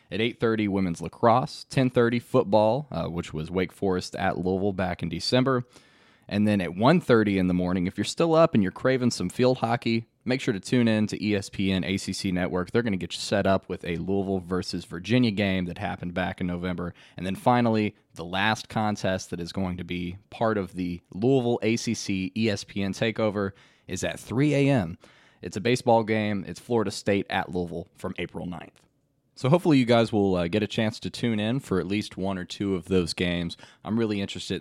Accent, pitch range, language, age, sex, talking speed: American, 90-115 Hz, English, 20-39, male, 205 wpm